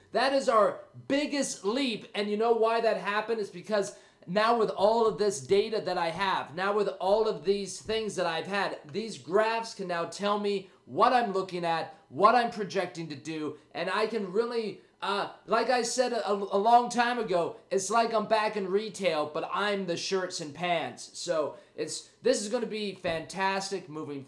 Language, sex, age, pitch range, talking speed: English, male, 30-49, 170-220 Hz, 200 wpm